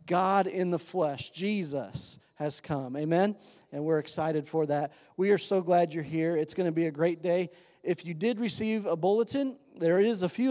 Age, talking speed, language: 40-59, 205 wpm, English